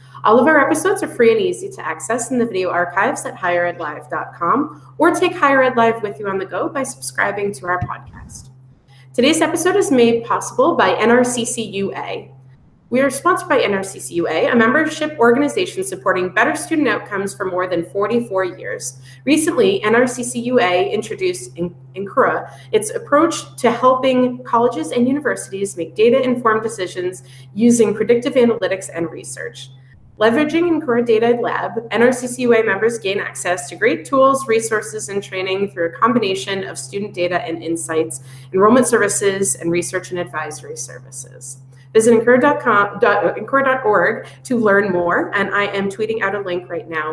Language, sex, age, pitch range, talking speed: English, female, 30-49, 165-245 Hz, 150 wpm